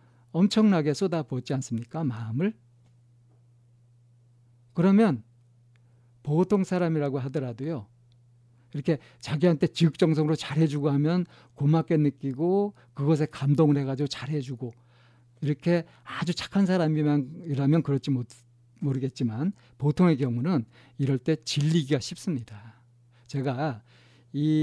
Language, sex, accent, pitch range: Korean, male, native, 120-155 Hz